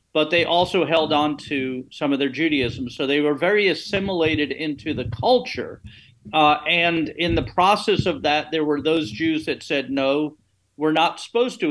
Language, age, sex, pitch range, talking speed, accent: English, 50-69, male, 135-160 Hz, 185 wpm, American